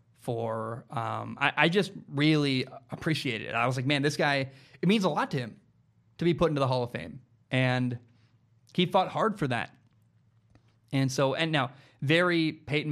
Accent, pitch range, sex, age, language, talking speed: American, 120-155 Hz, male, 20-39, English, 185 wpm